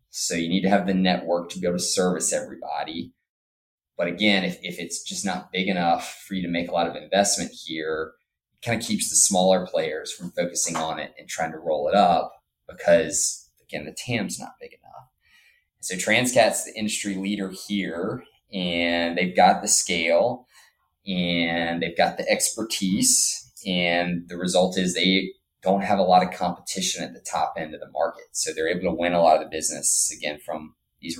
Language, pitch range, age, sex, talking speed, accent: English, 85-105 Hz, 20-39, male, 195 wpm, American